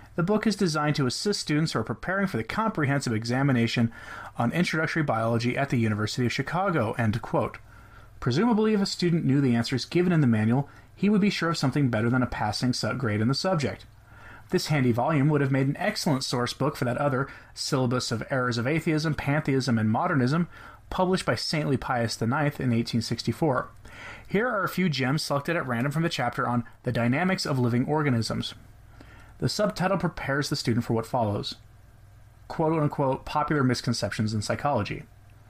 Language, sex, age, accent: English, male, 30-49, American